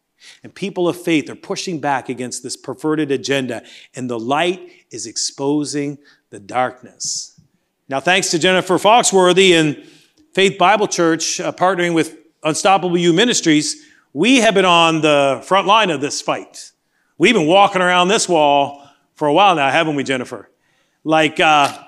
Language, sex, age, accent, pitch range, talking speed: English, male, 40-59, American, 145-210 Hz, 160 wpm